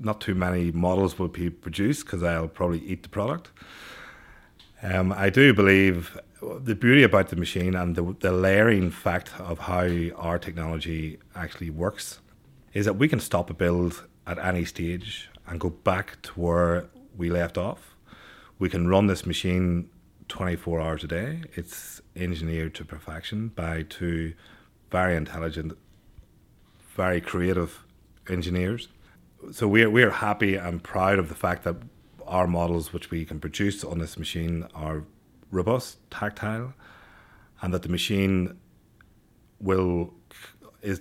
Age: 30-49